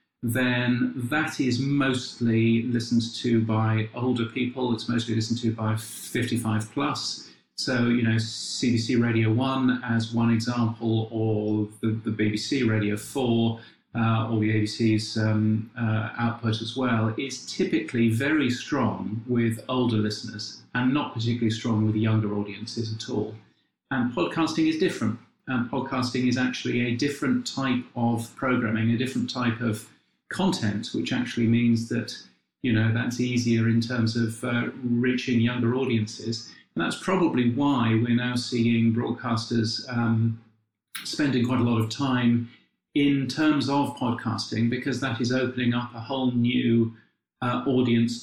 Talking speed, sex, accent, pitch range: 145 wpm, male, British, 115-125 Hz